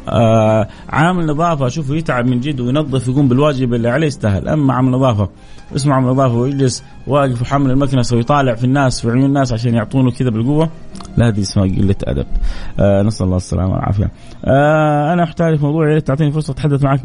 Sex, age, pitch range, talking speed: male, 30-49, 125-155 Hz, 185 wpm